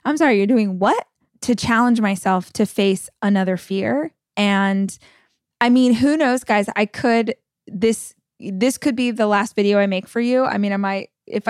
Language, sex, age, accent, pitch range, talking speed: English, female, 20-39, American, 195-240 Hz, 195 wpm